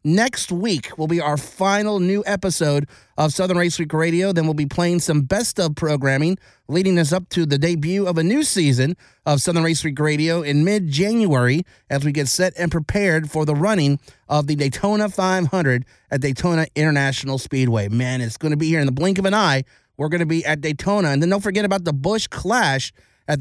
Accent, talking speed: American, 210 wpm